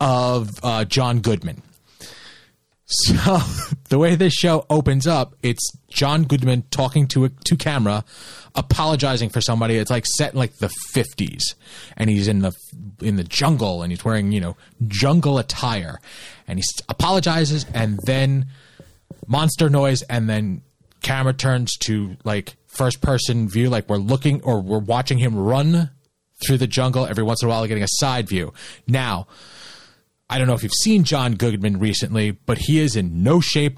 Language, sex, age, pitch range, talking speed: English, male, 30-49, 110-145 Hz, 170 wpm